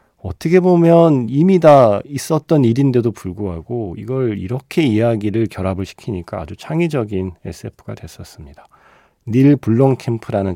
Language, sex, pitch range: Korean, male, 95-135 Hz